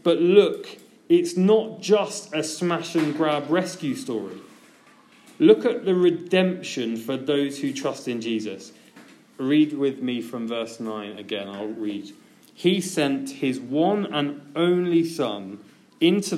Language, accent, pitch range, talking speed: English, British, 155-235 Hz, 140 wpm